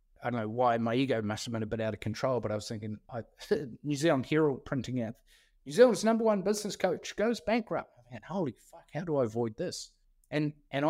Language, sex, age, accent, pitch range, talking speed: English, male, 20-39, Australian, 120-150 Hz, 230 wpm